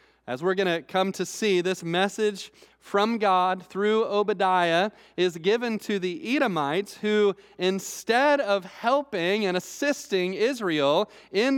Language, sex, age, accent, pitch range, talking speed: English, male, 30-49, American, 165-210 Hz, 135 wpm